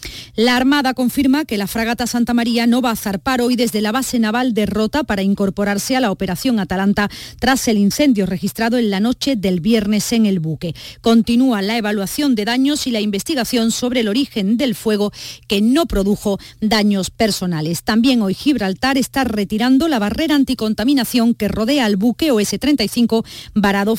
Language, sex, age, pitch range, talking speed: Spanish, female, 40-59, 200-245 Hz, 175 wpm